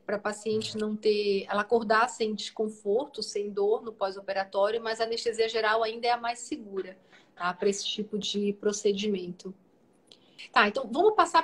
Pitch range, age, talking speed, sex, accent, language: 215-280 Hz, 40-59, 170 wpm, female, Brazilian, Portuguese